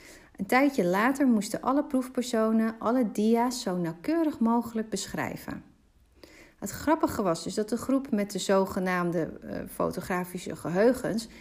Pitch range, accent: 195-245 Hz, Dutch